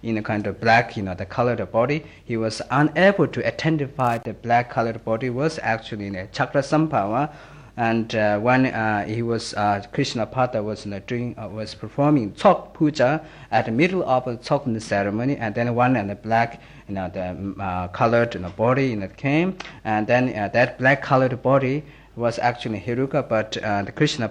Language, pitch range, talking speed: Italian, 100-130 Hz, 205 wpm